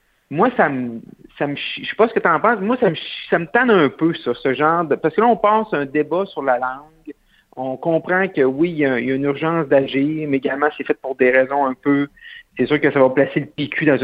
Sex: male